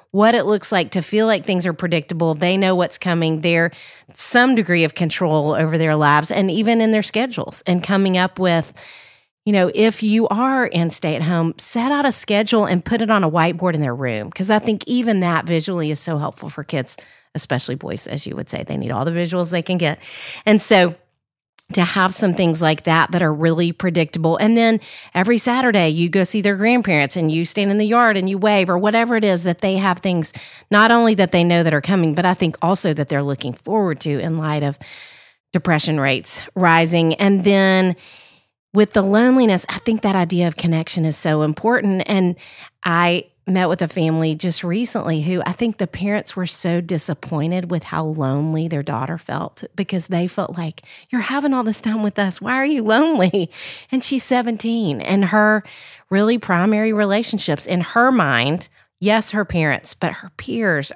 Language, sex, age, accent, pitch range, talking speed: English, female, 40-59, American, 165-210 Hz, 200 wpm